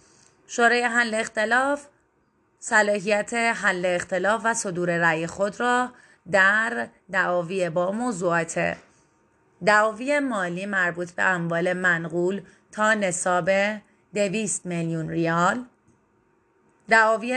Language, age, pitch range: Persian, 30-49, 175-215 Hz